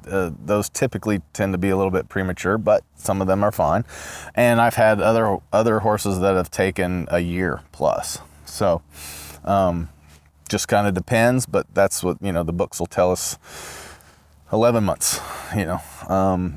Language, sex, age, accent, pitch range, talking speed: English, male, 20-39, American, 90-105 Hz, 175 wpm